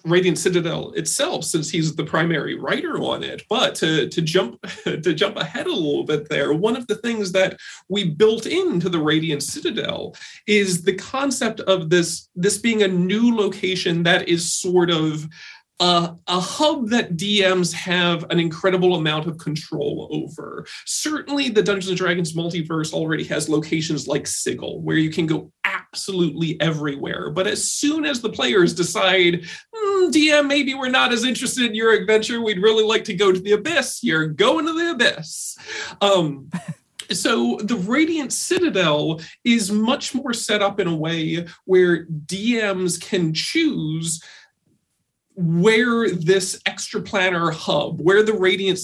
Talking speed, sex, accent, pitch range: 155 wpm, male, American, 165-220 Hz